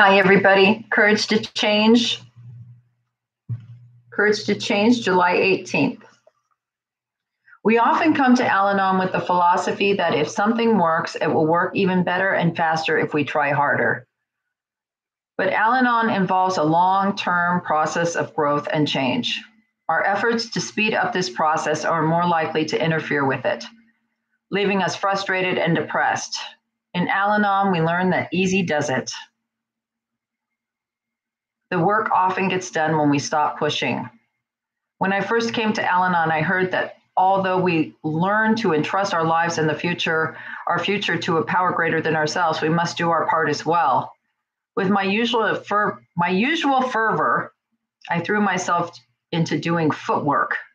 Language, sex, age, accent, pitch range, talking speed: English, female, 40-59, American, 160-205 Hz, 150 wpm